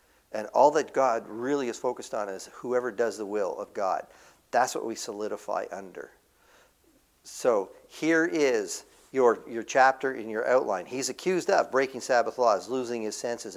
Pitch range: 125-160 Hz